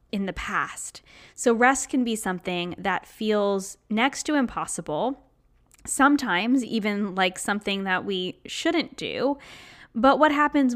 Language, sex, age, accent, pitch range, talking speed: English, female, 10-29, American, 185-230 Hz, 135 wpm